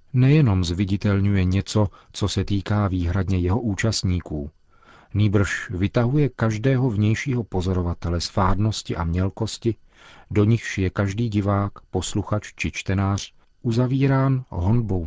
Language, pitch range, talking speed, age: Czech, 95-115 Hz, 110 wpm, 40-59